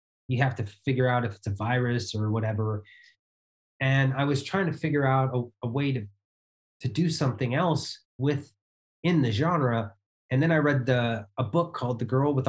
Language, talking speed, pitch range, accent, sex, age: English, 195 wpm, 105-130 Hz, American, male, 30-49